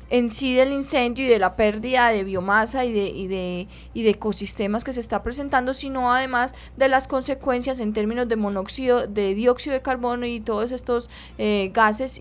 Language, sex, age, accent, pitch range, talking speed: Spanish, female, 10-29, Colombian, 215-255 Hz, 190 wpm